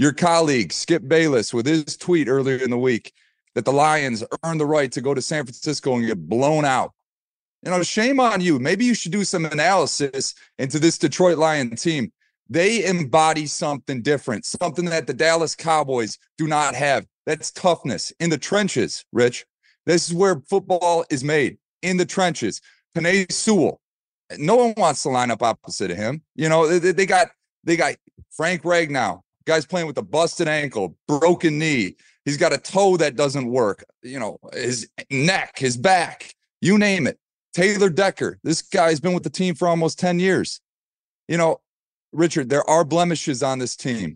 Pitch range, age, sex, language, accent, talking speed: 130-170 Hz, 30-49, male, English, American, 180 wpm